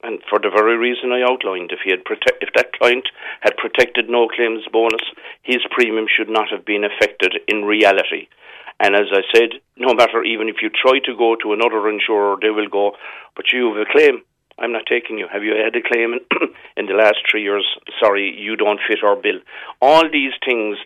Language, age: English, 50-69